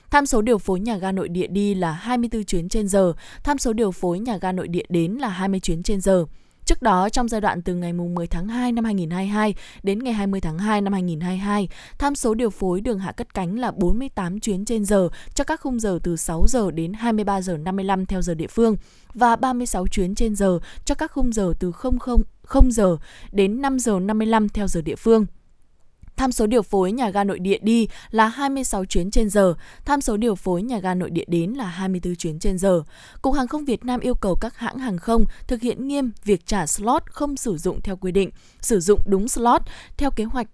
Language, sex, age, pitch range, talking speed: Vietnamese, female, 20-39, 185-235 Hz, 230 wpm